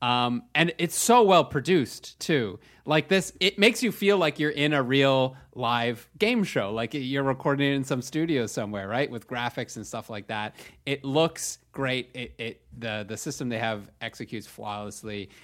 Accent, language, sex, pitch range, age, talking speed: American, English, male, 110-140 Hz, 30-49, 185 wpm